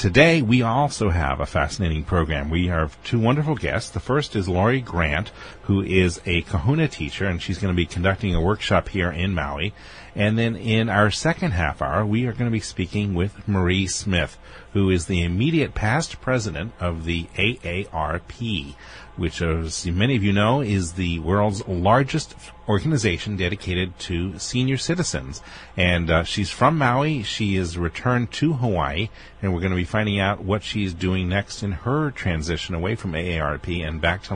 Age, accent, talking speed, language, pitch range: 40-59, American, 180 wpm, English, 85-115 Hz